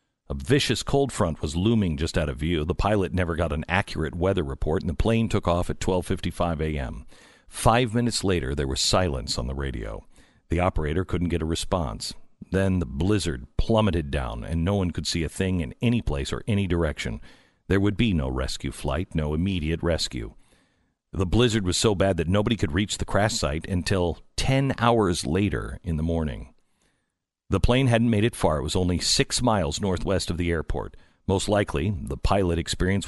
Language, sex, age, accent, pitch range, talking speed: English, male, 50-69, American, 80-100 Hz, 195 wpm